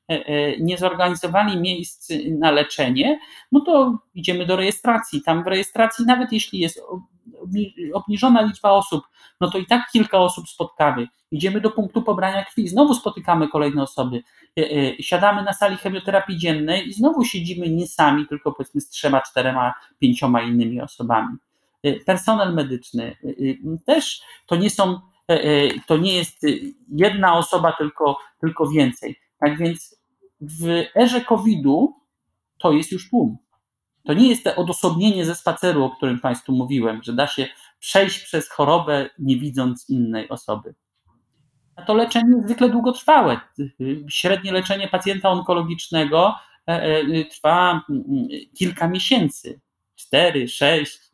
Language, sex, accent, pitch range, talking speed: Polish, male, native, 145-205 Hz, 130 wpm